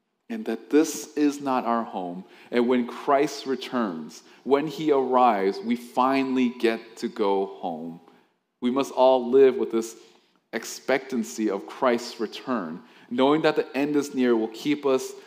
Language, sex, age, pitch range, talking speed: English, male, 20-39, 115-140 Hz, 155 wpm